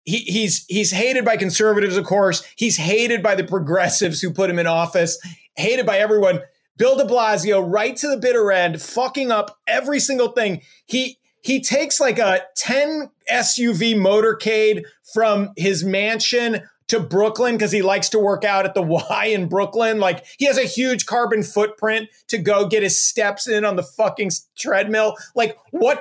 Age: 30-49